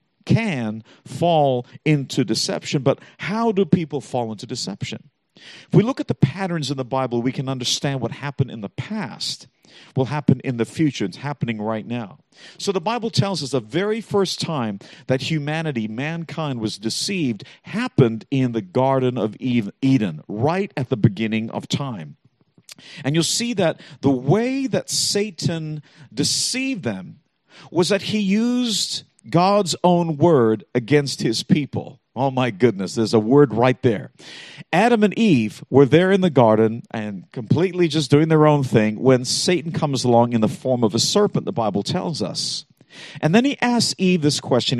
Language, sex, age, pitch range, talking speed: English, male, 50-69, 125-175 Hz, 170 wpm